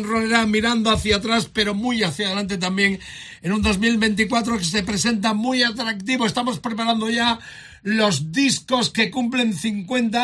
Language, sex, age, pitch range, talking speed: Spanish, male, 60-79, 180-220 Hz, 145 wpm